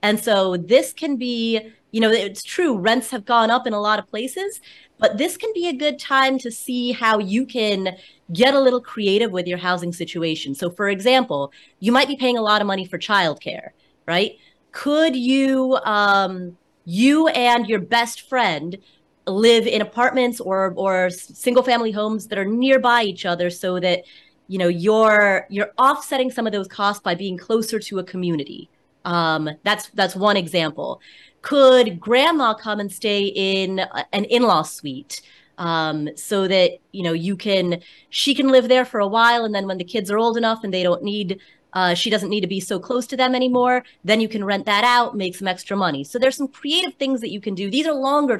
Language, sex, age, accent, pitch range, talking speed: English, female, 30-49, American, 190-250 Hz, 200 wpm